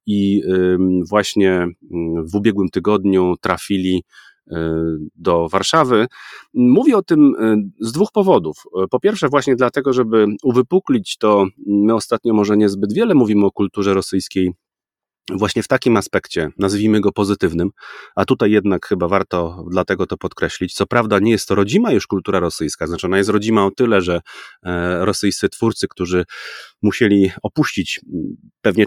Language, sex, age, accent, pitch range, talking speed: Polish, male, 30-49, native, 90-115 Hz, 140 wpm